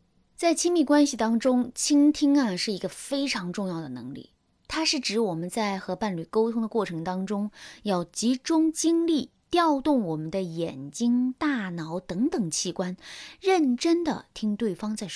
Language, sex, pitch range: Chinese, female, 195-295 Hz